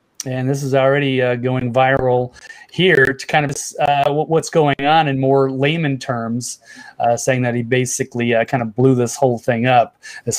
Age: 30-49